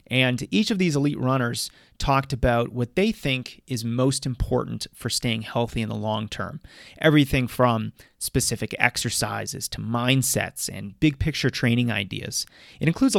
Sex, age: male, 30-49